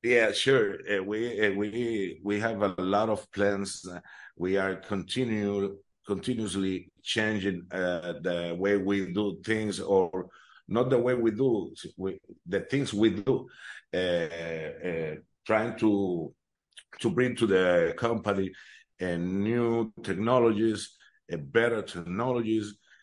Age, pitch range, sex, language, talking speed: 50-69, 90-110 Hz, male, English, 120 wpm